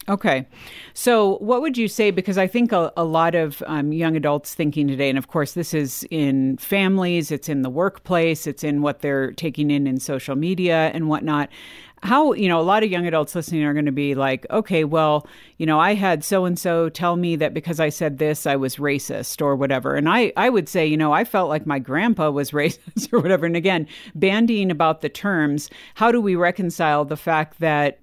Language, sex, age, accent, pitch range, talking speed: English, female, 50-69, American, 140-170 Hz, 225 wpm